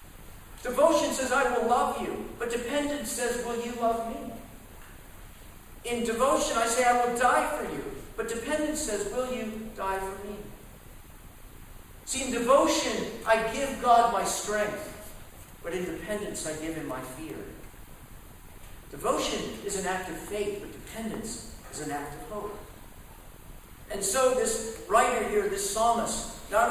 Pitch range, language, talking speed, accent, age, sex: 195-235 Hz, English, 150 wpm, American, 50-69, male